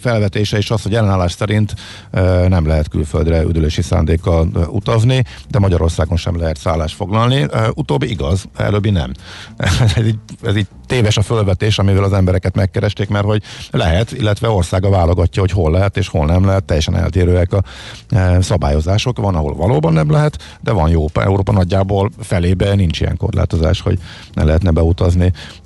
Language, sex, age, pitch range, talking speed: Hungarian, male, 50-69, 90-110 Hz, 155 wpm